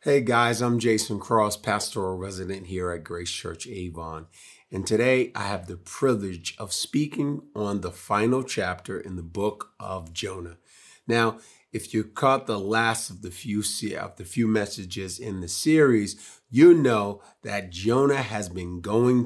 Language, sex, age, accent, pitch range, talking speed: English, male, 40-59, American, 95-130 Hz, 155 wpm